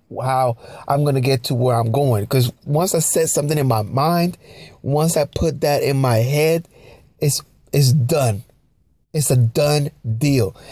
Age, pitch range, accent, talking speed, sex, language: 30-49, 125-150 Hz, American, 175 wpm, male, English